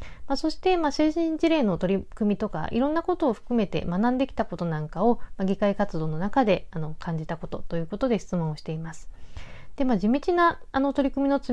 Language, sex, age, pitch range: Japanese, female, 40-59, 175-260 Hz